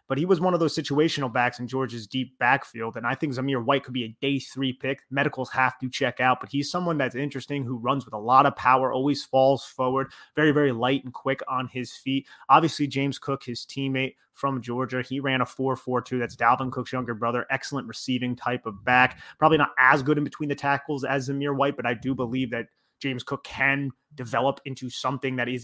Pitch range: 125-140 Hz